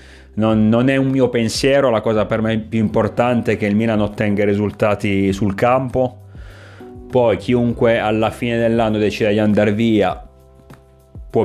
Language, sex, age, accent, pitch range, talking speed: Italian, male, 30-49, native, 95-110 Hz, 155 wpm